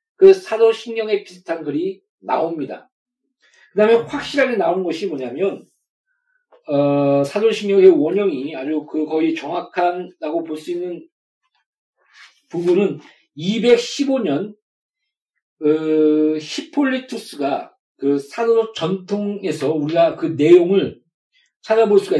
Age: 40-59